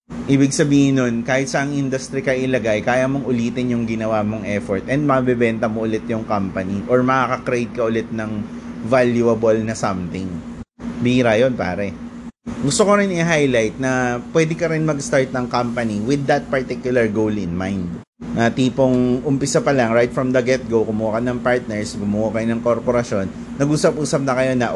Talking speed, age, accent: 165 wpm, 30-49, native